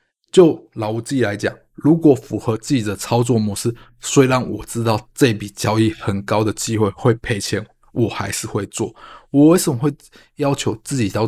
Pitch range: 110-145 Hz